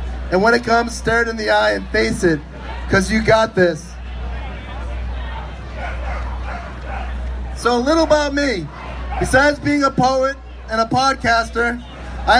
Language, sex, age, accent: English, male, 30-49, American